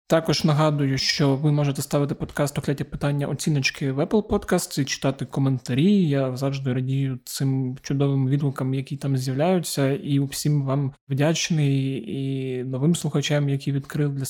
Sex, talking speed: male, 145 wpm